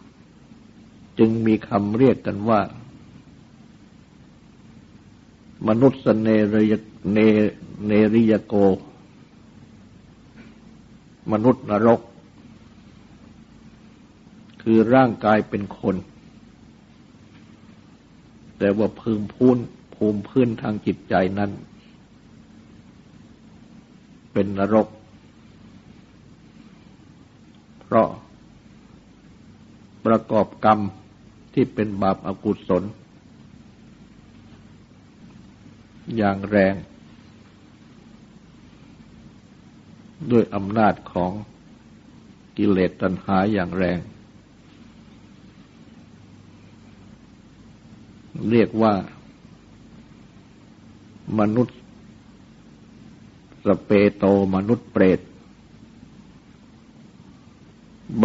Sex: male